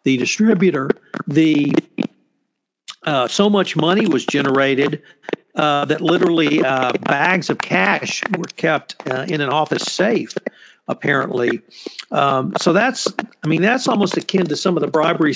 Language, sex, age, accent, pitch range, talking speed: English, male, 50-69, American, 145-180 Hz, 145 wpm